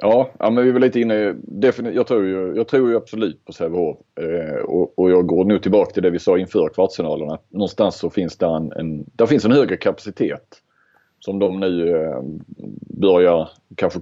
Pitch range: 90-135 Hz